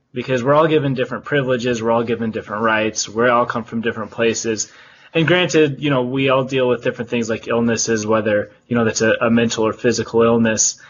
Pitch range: 115-130 Hz